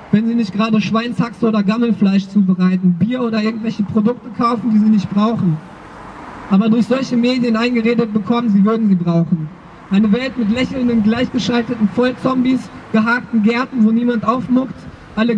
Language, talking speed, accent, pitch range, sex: German, 150 wpm, German, 215-240 Hz, male